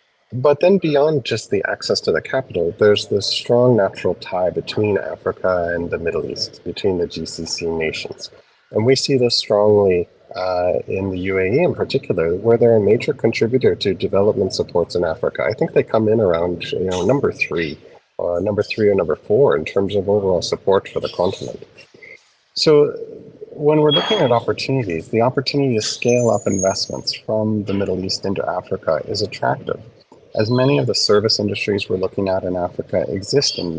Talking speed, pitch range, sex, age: 180 wpm, 95-140 Hz, male, 30-49